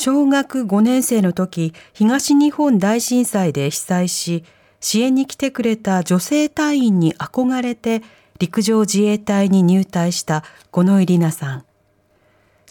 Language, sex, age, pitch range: Japanese, female, 40-59, 150-230 Hz